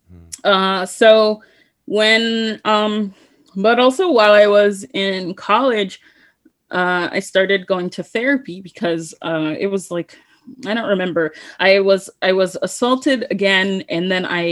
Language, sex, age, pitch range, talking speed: English, female, 20-39, 170-215 Hz, 140 wpm